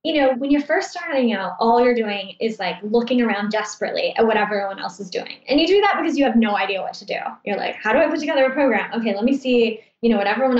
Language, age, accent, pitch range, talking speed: English, 10-29, American, 205-260 Hz, 285 wpm